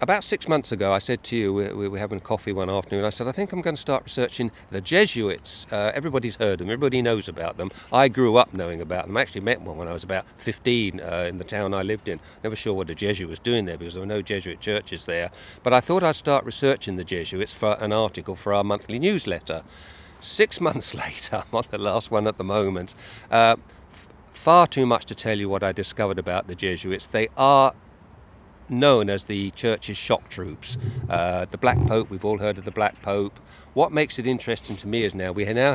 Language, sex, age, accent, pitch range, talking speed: English, male, 50-69, British, 95-125 Hz, 230 wpm